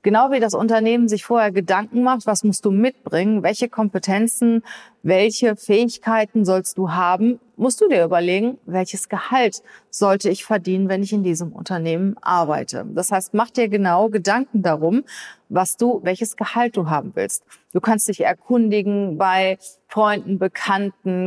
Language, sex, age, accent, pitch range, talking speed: German, female, 30-49, German, 180-215 Hz, 155 wpm